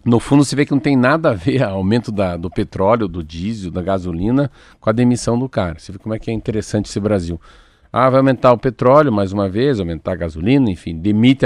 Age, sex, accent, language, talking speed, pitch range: 50-69, male, Brazilian, Portuguese, 240 wpm, 105-130 Hz